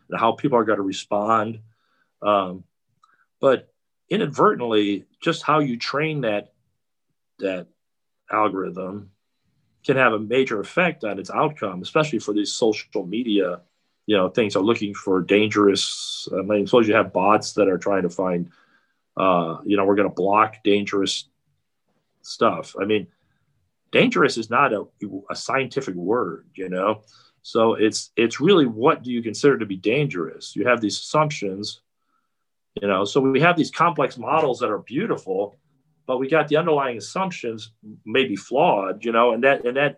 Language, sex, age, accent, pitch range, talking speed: English, male, 40-59, American, 100-140 Hz, 160 wpm